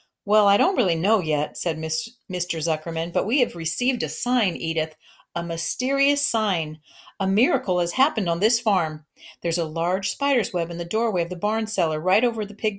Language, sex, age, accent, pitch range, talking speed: English, female, 50-69, American, 165-230 Hz, 195 wpm